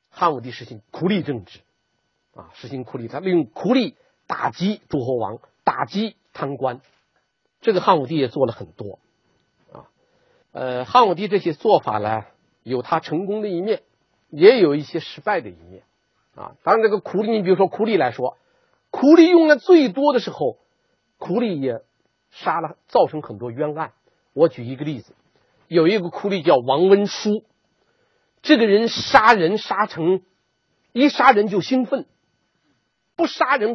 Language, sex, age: Chinese, male, 50-69